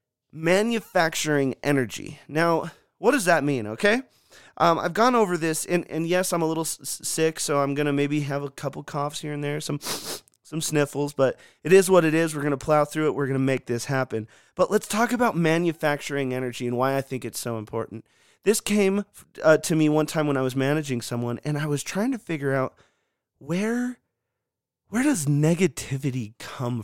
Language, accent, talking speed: English, American, 205 wpm